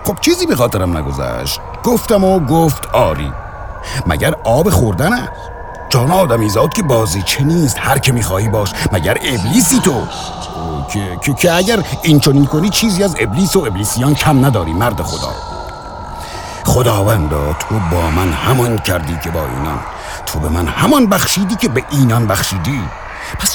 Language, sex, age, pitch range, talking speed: Persian, male, 60-79, 85-140 Hz, 155 wpm